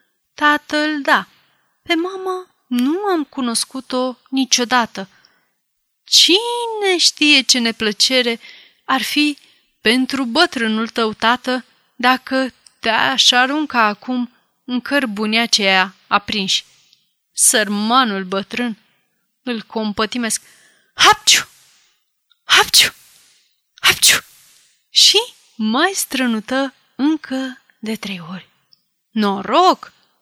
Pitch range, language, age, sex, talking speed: 220-295 Hz, Romanian, 30-49, female, 80 wpm